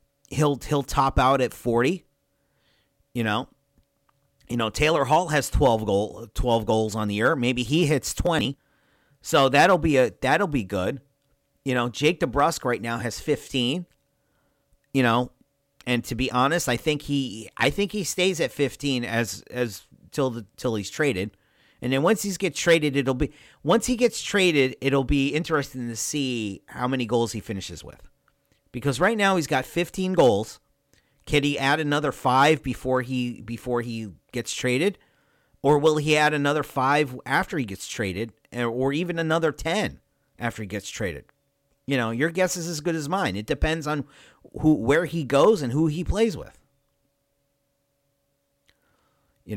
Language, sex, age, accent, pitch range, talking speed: English, male, 40-59, American, 120-150 Hz, 170 wpm